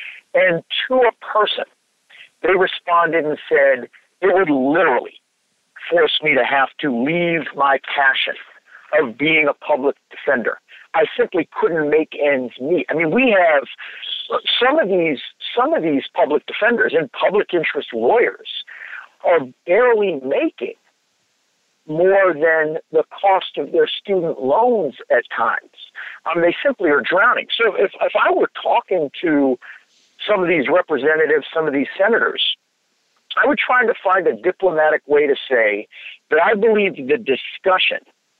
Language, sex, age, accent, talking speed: English, male, 50-69, American, 145 wpm